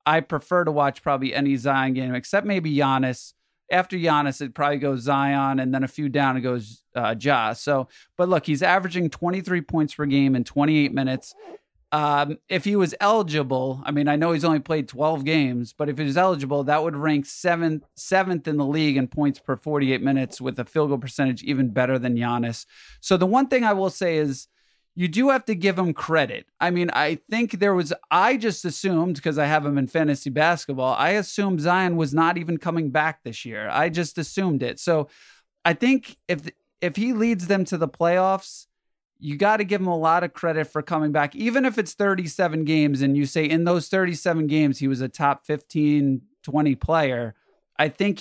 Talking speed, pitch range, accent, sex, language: 210 wpm, 140-175 Hz, American, male, English